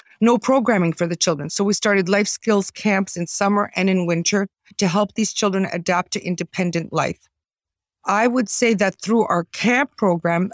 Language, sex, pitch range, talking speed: English, female, 175-205 Hz, 180 wpm